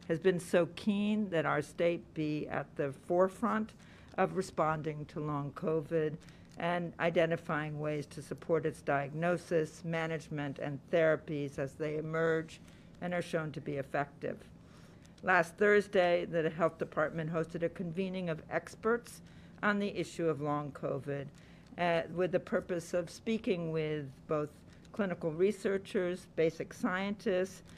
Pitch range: 155-185 Hz